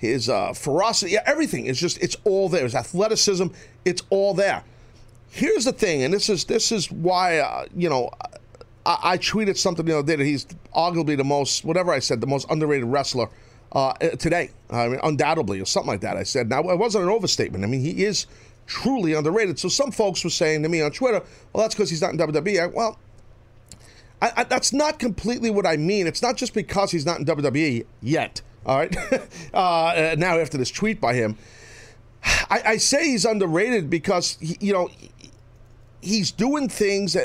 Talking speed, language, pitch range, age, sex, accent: 200 wpm, English, 130-200 Hz, 40-59, male, American